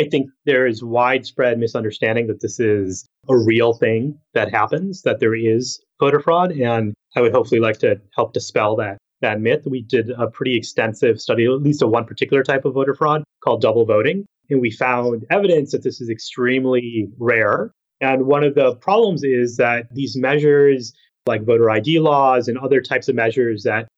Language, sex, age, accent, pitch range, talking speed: English, male, 30-49, American, 115-140 Hz, 190 wpm